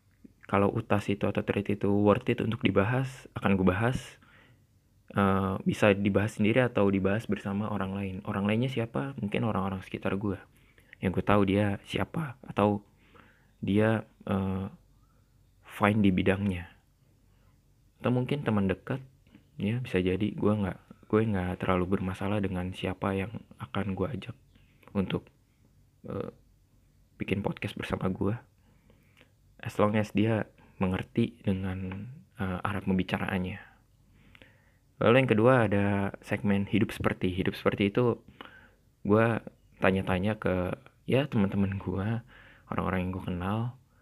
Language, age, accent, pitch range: Indonesian, 20-39, native, 95-115 Hz